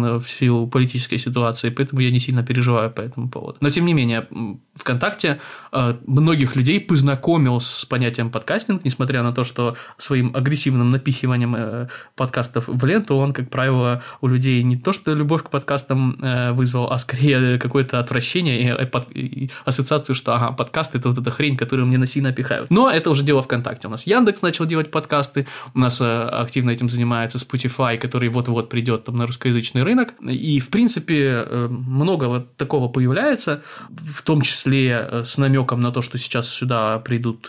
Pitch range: 120-140 Hz